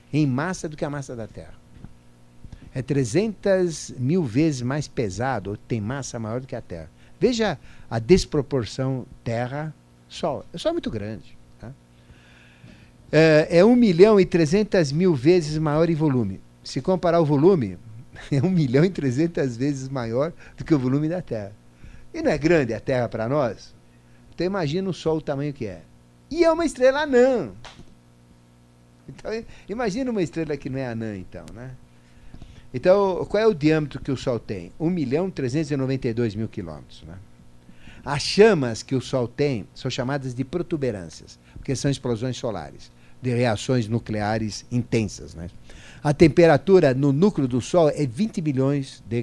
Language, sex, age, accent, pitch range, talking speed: Portuguese, male, 50-69, Brazilian, 105-160 Hz, 160 wpm